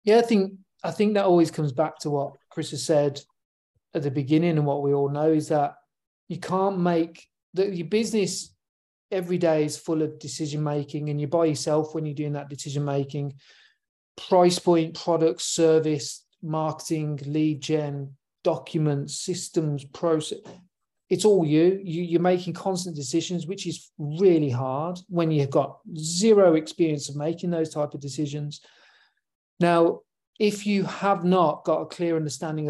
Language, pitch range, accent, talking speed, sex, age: English, 150-175 Hz, British, 160 wpm, male, 40-59